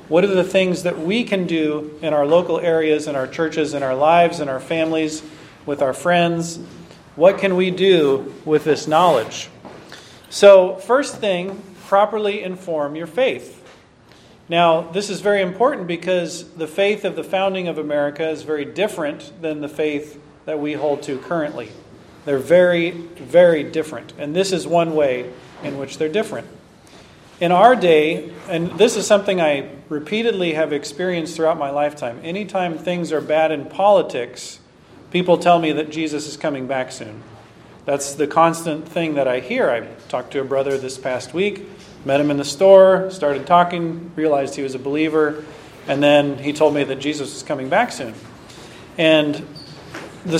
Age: 40-59